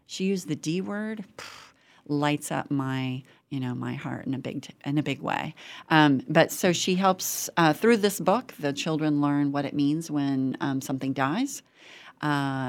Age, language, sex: 40-59, English, female